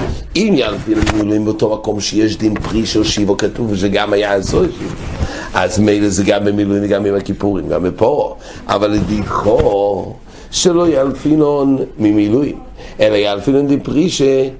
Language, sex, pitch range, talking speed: English, male, 105-150 Hz, 130 wpm